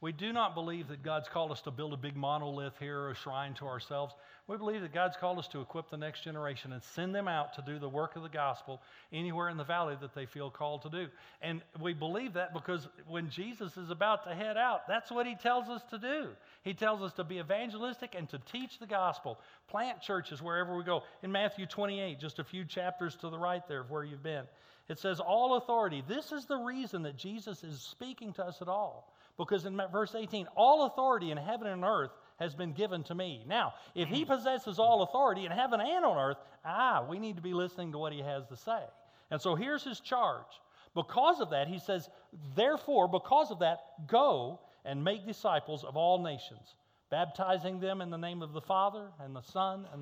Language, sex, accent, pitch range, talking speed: English, male, American, 150-210 Hz, 225 wpm